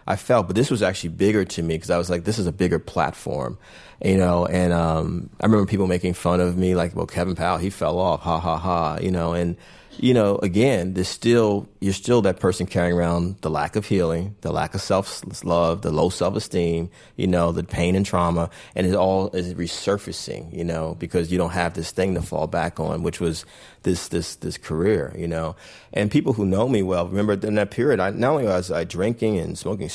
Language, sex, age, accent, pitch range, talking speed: English, male, 30-49, American, 85-100 Hz, 225 wpm